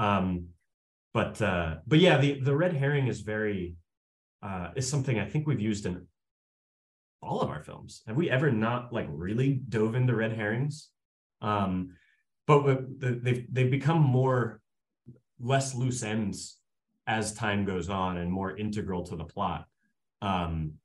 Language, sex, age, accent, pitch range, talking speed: English, male, 30-49, American, 85-120 Hz, 155 wpm